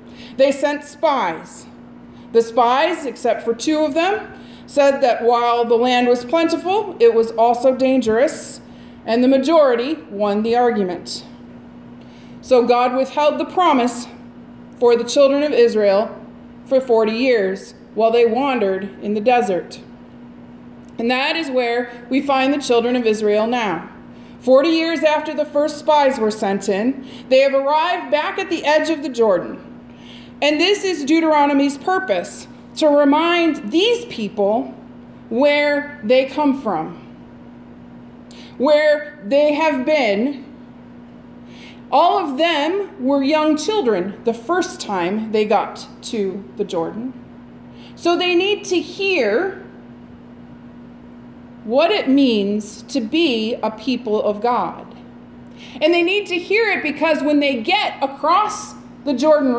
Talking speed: 135 wpm